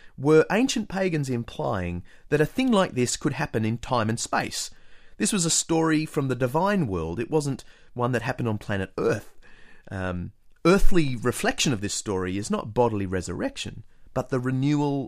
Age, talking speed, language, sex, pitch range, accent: 30-49, 175 wpm, English, male, 110-180 Hz, Australian